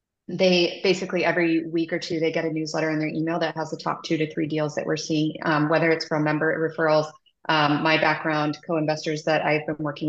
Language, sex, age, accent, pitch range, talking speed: English, female, 20-39, American, 155-165 Hz, 225 wpm